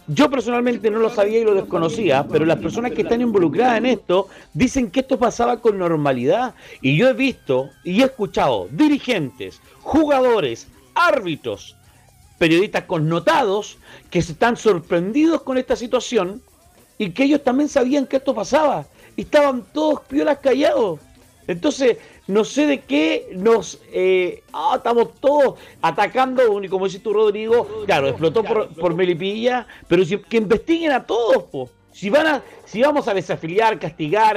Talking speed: 155 wpm